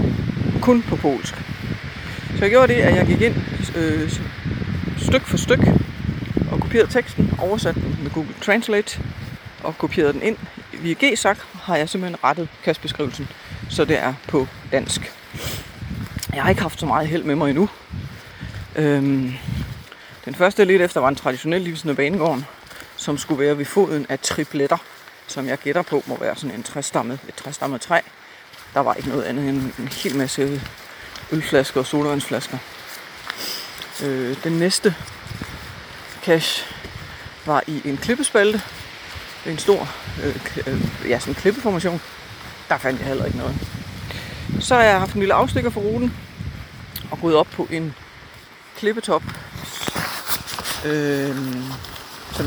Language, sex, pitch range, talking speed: Danish, female, 135-180 Hz, 140 wpm